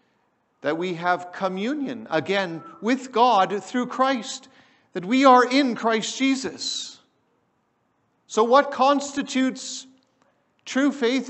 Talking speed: 105 wpm